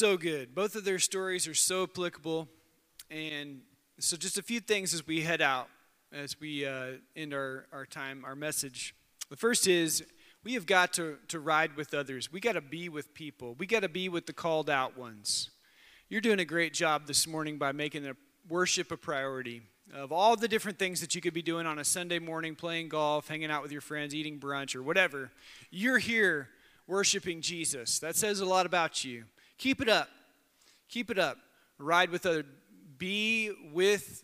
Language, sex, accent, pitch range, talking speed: English, male, American, 150-200 Hz, 200 wpm